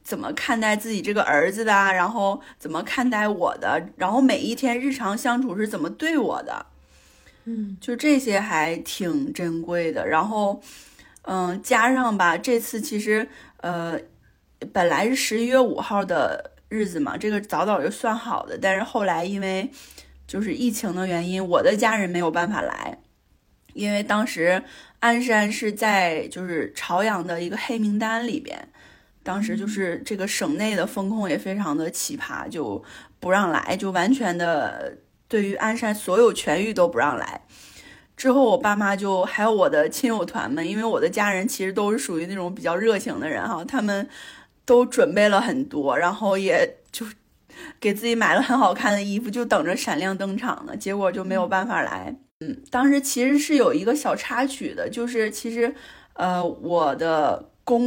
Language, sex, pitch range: Chinese, female, 190-255 Hz